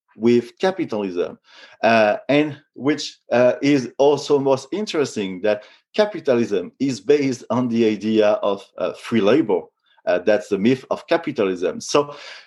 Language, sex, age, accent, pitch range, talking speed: English, male, 40-59, French, 115-150 Hz, 135 wpm